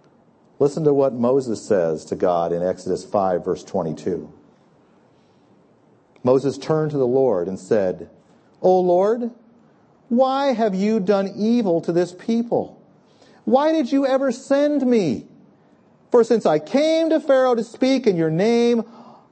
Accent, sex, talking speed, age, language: American, male, 145 wpm, 50-69, English